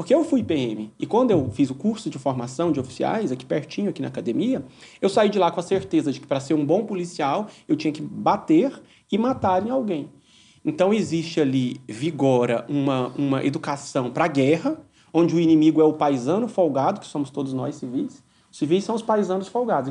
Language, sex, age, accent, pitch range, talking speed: Portuguese, male, 30-49, Brazilian, 145-220 Hz, 205 wpm